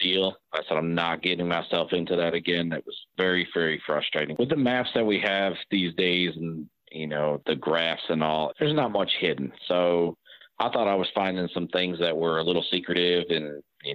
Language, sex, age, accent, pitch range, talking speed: English, male, 40-59, American, 85-95 Hz, 210 wpm